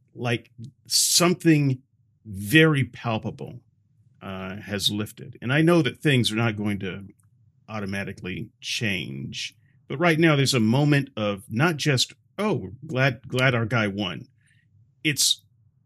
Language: English